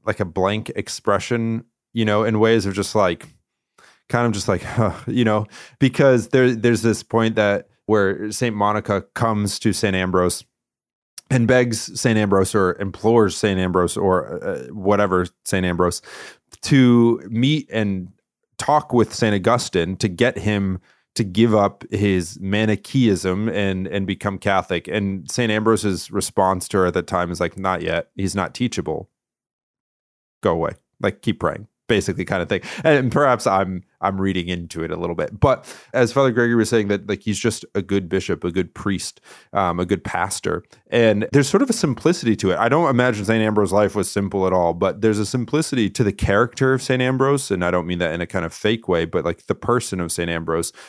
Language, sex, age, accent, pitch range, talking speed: English, male, 30-49, American, 95-115 Hz, 195 wpm